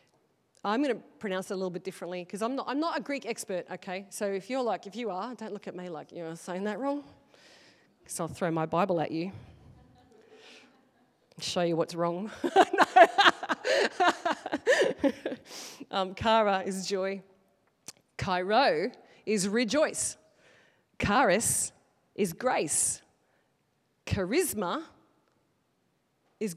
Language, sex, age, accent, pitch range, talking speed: English, female, 30-49, Australian, 180-230 Hz, 120 wpm